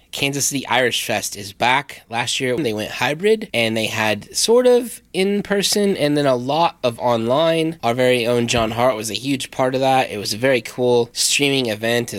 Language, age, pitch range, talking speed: English, 20-39, 110-145 Hz, 205 wpm